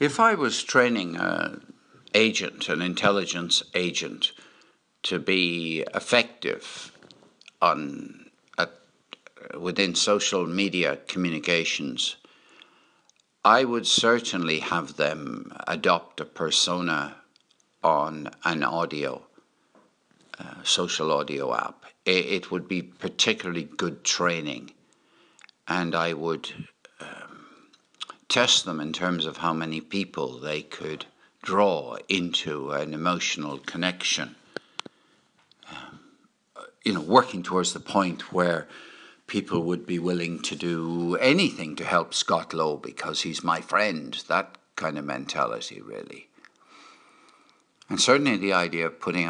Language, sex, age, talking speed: English, male, 60-79, 110 wpm